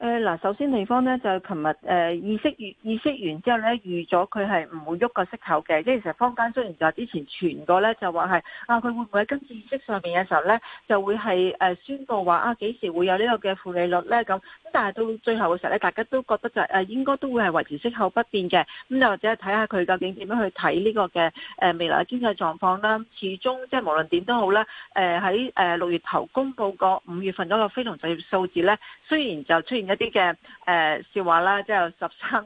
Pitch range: 180-235 Hz